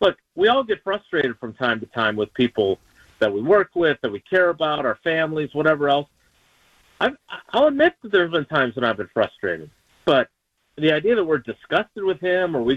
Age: 50-69